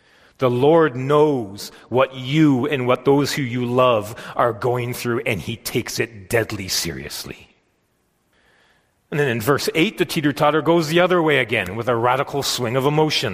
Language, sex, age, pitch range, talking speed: English, male, 40-59, 130-175 Hz, 170 wpm